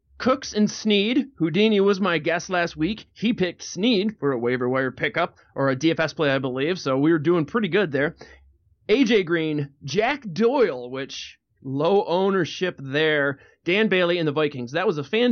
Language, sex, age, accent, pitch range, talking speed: English, male, 30-49, American, 155-235 Hz, 185 wpm